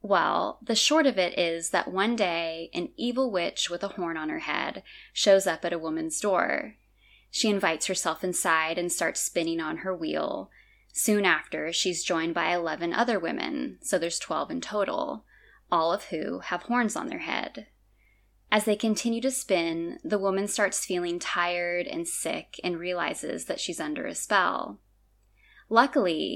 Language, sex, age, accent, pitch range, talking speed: English, female, 10-29, American, 170-225 Hz, 170 wpm